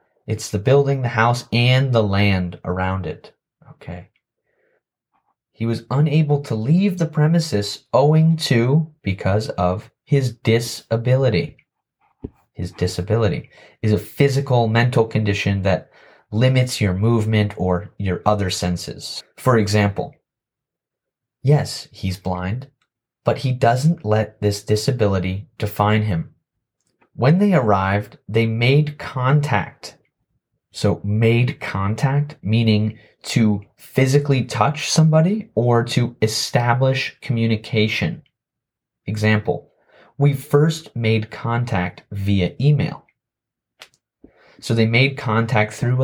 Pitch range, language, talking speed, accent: 105-135 Hz, English, 105 wpm, American